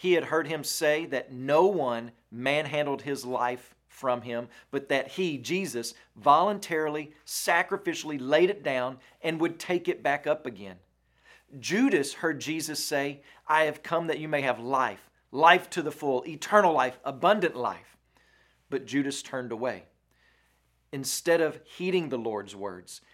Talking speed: 155 wpm